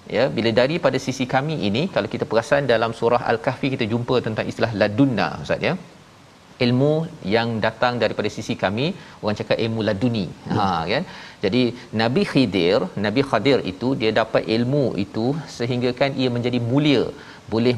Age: 40-59